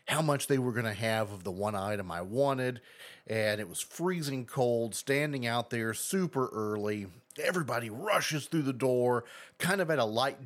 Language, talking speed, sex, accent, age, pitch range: English, 190 wpm, male, American, 30-49, 105-140 Hz